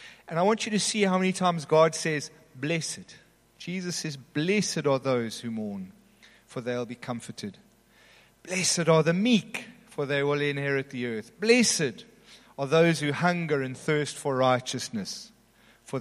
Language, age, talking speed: English, 40-59, 165 wpm